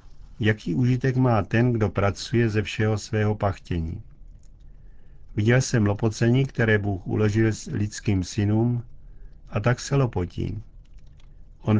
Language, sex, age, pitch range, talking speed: Czech, male, 50-69, 100-120 Hz, 120 wpm